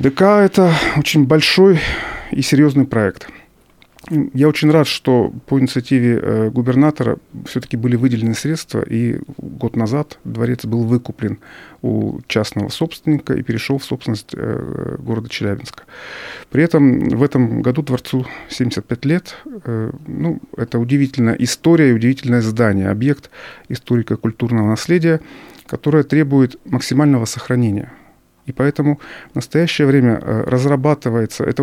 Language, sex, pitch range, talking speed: Russian, male, 115-145 Hz, 120 wpm